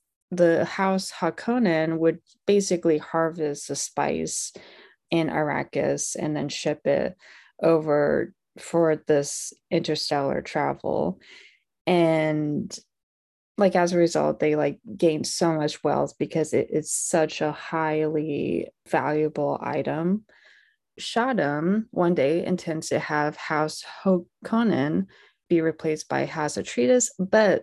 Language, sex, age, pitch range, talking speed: English, female, 20-39, 155-185 Hz, 115 wpm